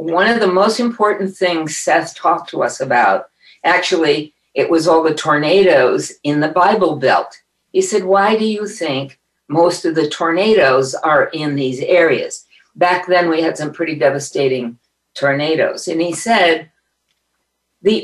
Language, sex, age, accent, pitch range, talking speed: English, female, 50-69, American, 160-200 Hz, 155 wpm